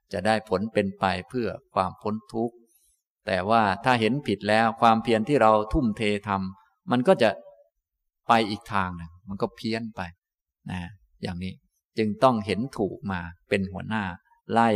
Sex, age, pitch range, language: male, 20-39, 100-120 Hz, Thai